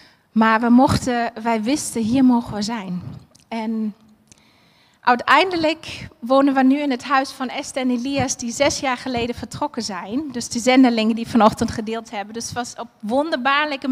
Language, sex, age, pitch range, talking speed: Dutch, female, 30-49, 235-285 Hz, 165 wpm